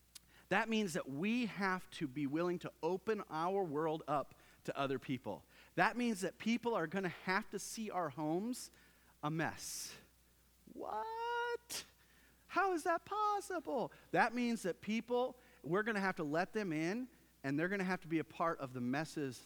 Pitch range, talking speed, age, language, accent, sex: 125-180 Hz, 180 wpm, 40-59, English, American, male